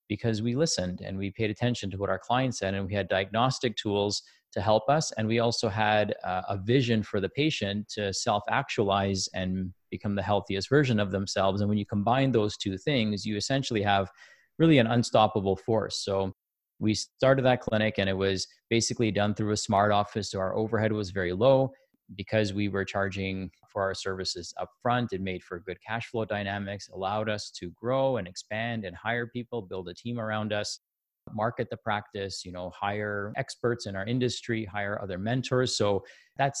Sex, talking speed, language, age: male, 190 wpm, English, 30-49